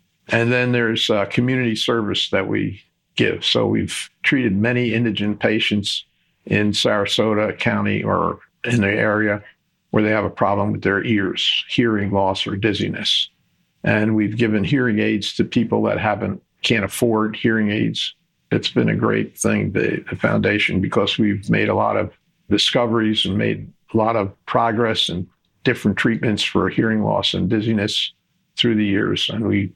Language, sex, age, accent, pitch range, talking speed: English, male, 50-69, American, 105-115 Hz, 160 wpm